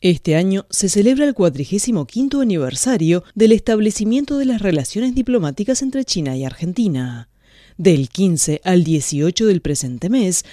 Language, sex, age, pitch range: Chinese, female, 30-49, 150-225 Hz